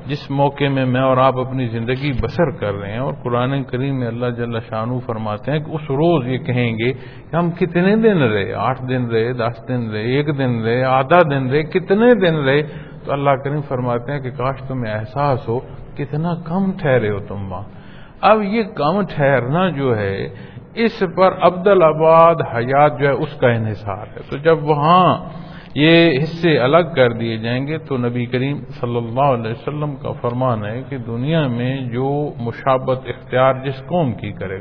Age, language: 50-69, Punjabi